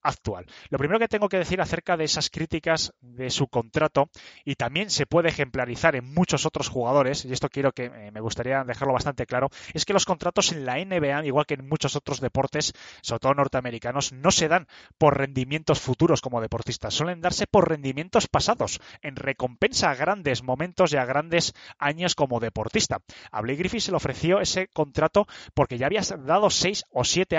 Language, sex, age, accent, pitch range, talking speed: Spanish, male, 20-39, Spanish, 130-165 Hz, 190 wpm